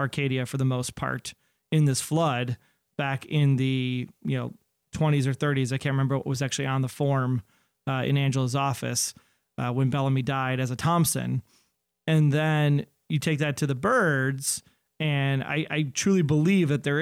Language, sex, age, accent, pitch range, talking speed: English, male, 30-49, American, 130-150 Hz, 180 wpm